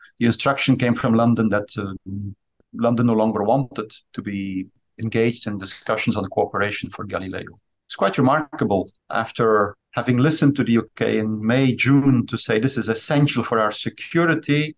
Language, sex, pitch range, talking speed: English, male, 105-135 Hz, 165 wpm